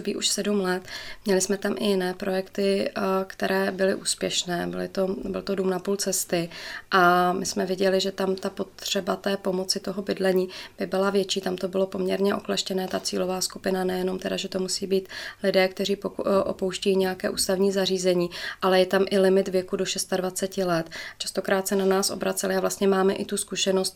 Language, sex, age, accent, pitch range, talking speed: Czech, female, 20-39, native, 180-195 Hz, 190 wpm